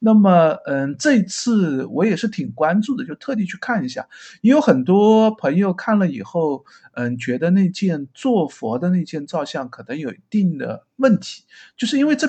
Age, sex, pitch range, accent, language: 50-69, male, 155-230 Hz, native, Chinese